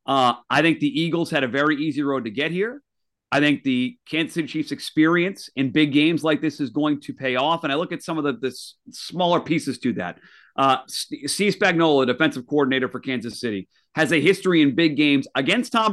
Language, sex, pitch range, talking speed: English, male, 140-185 Hz, 225 wpm